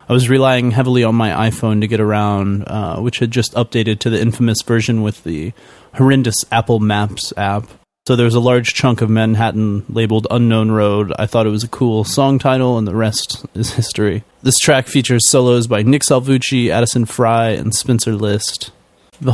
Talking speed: 190 wpm